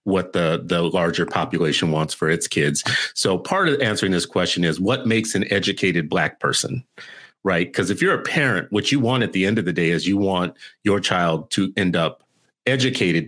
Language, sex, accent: English, male, American